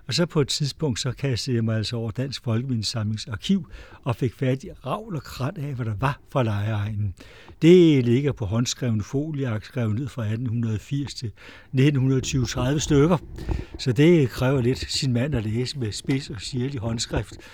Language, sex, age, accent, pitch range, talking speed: Danish, male, 60-79, native, 115-150 Hz, 180 wpm